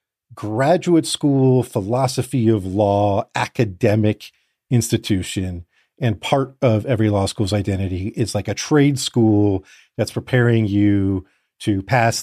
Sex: male